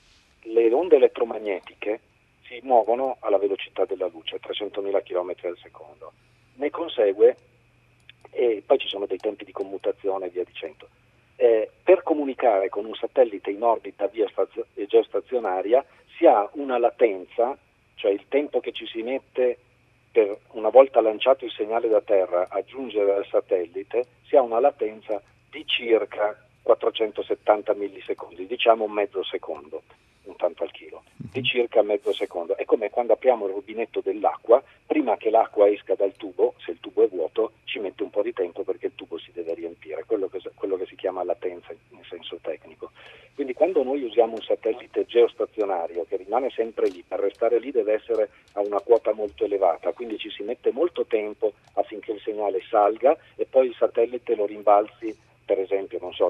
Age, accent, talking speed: 40-59, native, 170 wpm